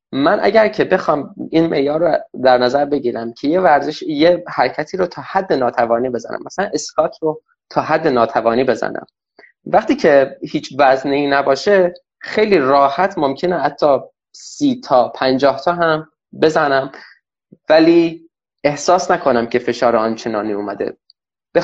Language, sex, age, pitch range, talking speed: Persian, male, 20-39, 135-210 Hz, 140 wpm